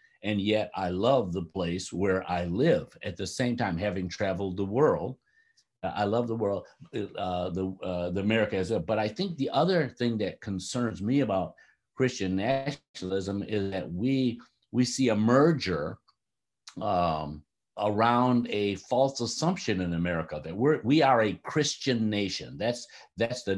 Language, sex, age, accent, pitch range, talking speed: English, male, 60-79, American, 95-130 Hz, 165 wpm